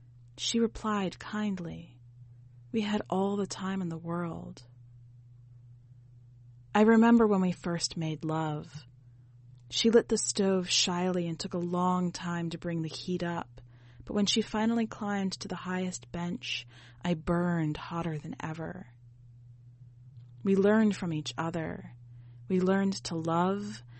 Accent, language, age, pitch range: American, English, 30-49, 120-180 Hz